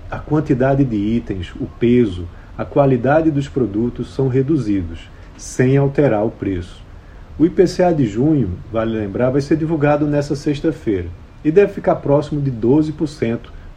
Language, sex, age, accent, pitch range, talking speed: Portuguese, male, 40-59, Brazilian, 110-150 Hz, 145 wpm